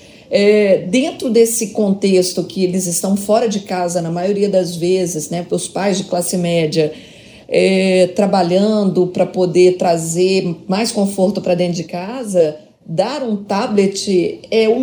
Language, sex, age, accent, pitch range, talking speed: Portuguese, female, 40-59, Brazilian, 175-220 Hz, 140 wpm